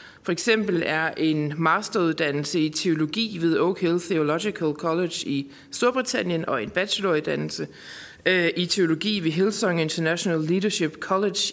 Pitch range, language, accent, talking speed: 160-205 Hz, Danish, native, 125 wpm